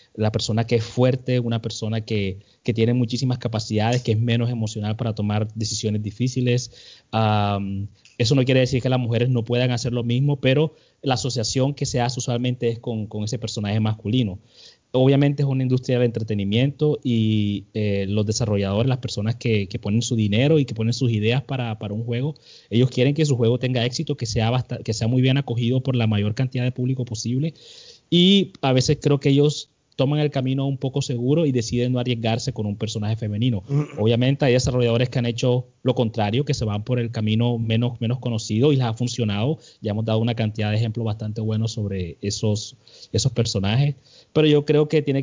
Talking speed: 205 wpm